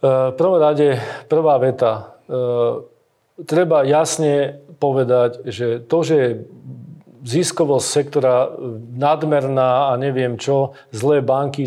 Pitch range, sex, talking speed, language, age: 125-145 Hz, male, 100 wpm, Slovak, 40-59